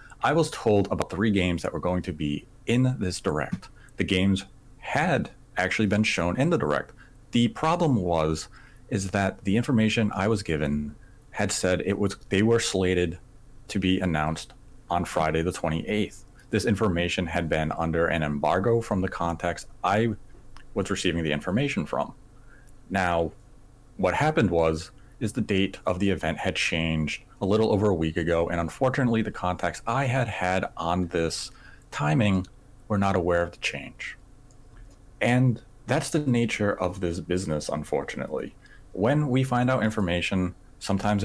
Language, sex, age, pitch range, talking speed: English, male, 30-49, 90-120 Hz, 160 wpm